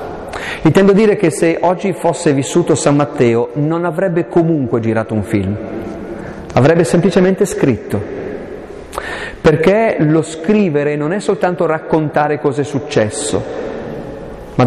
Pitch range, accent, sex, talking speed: 125-185 Hz, native, male, 120 wpm